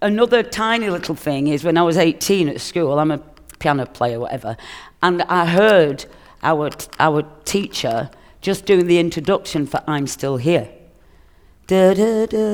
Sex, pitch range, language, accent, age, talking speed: female, 140-185 Hz, English, British, 50-69, 150 wpm